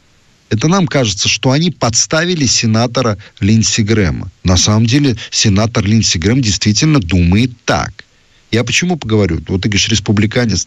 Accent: native